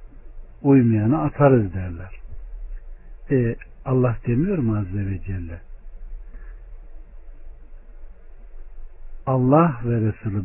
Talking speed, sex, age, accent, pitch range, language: 75 wpm, male, 60-79, native, 105-145 Hz, Turkish